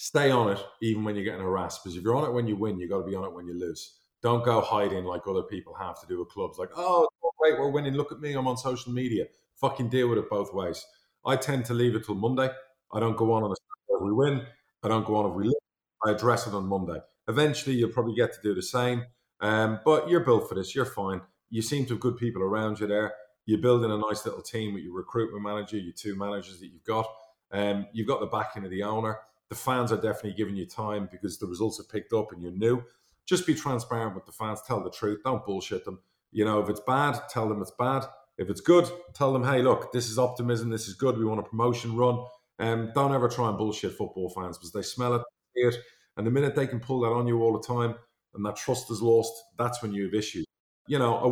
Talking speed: 265 wpm